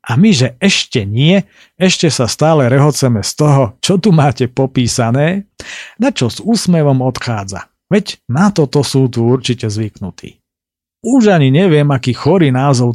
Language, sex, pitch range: Slovak, male, 120-150 Hz